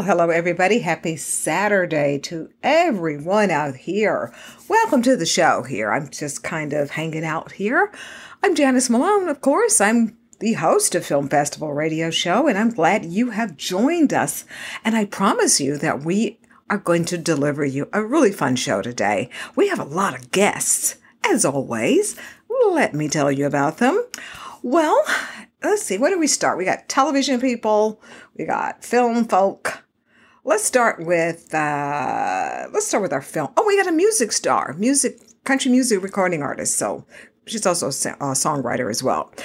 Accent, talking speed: American, 170 wpm